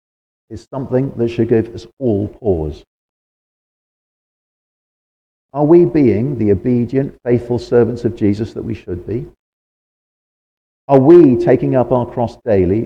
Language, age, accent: English, 50-69, British